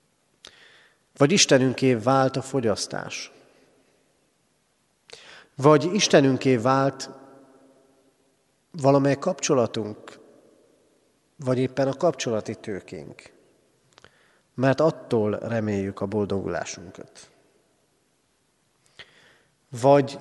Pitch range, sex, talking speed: 115-155 Hz, male, 60 wpm